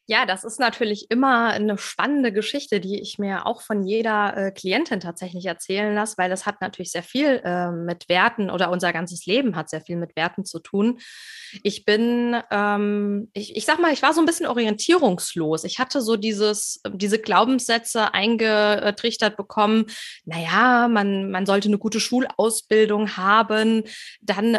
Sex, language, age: female, German, 20-39